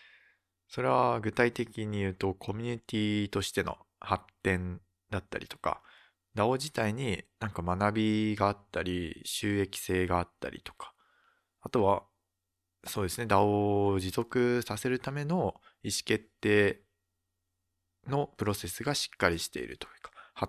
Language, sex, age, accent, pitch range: Japanese, male, 20-39, native, 90-115 Hz